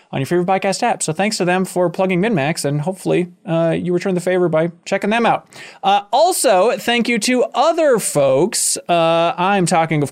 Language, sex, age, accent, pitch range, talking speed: English, male, 20-39, American, 160-215 Hz, 200 wpm